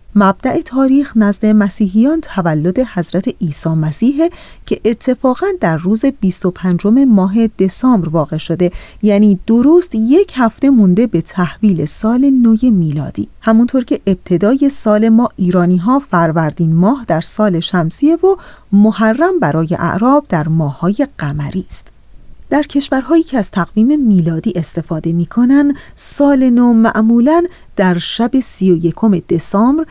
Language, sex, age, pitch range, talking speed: Persian, female, 40-59, 180-240 Hz, 125 wpm